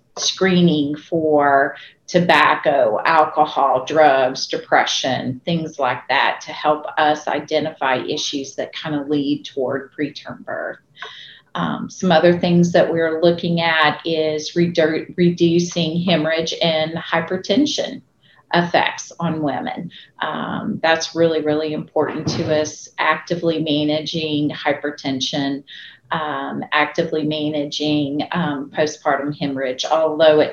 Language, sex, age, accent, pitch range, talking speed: English, female, 40-59, American, 150-170 Hz, 110 wpm